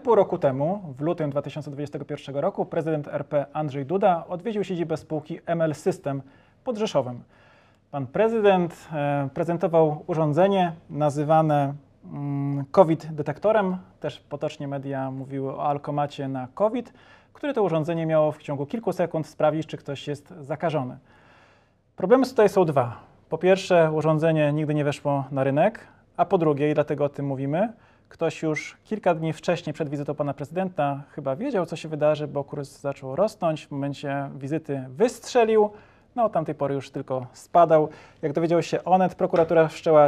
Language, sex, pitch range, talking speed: Polish, male, 145-175 Hz, 150 wpm